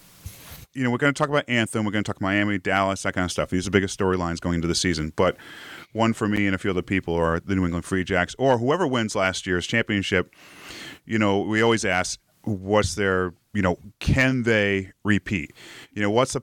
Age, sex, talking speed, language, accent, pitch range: 30-49, male, 235 wpm, English, American, 90-110 Hz